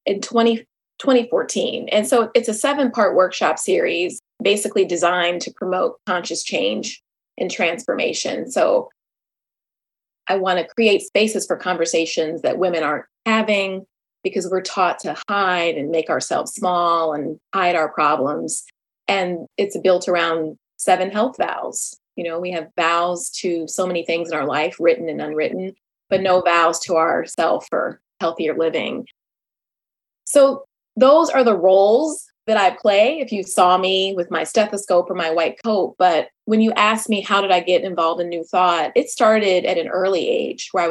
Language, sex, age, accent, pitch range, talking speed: English, female, 20-39, American, 170-215 Hz, 165 wpm